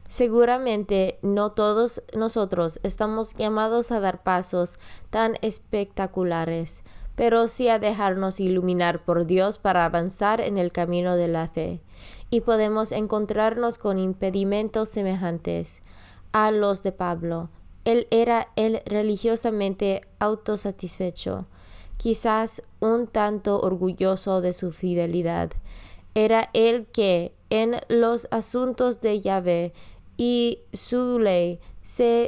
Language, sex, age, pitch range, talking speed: Spanish, female, 20-39, 180-220 Hz, 110 wpm